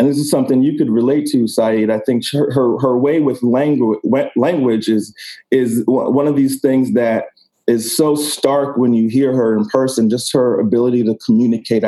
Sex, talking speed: male, 200 wpm